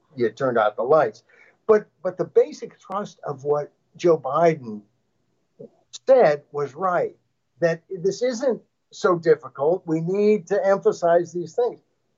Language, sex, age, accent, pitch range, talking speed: English, male, 60-79, American, 160-230 Hz, 140 wpm